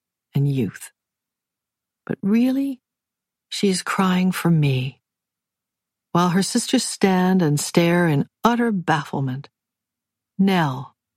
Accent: American